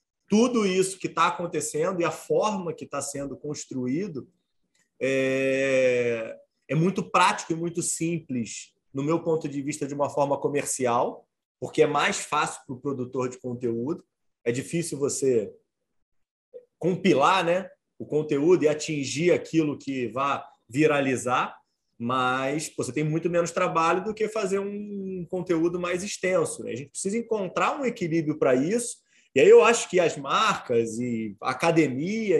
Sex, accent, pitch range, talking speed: male, Brazilian, 135-195 Hz, 150 wpm